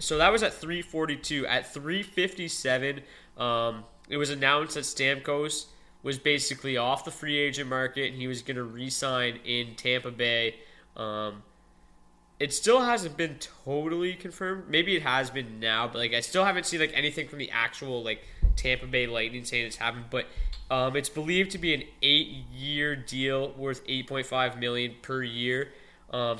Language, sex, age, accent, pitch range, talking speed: English, male, 20-39, American, 125-160 Hz, 170 wpm